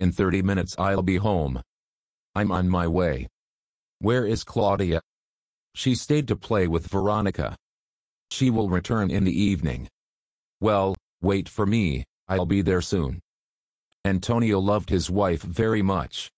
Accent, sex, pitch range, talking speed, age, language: American, male, 90-105 Hz, 145 wpm, 40-59, English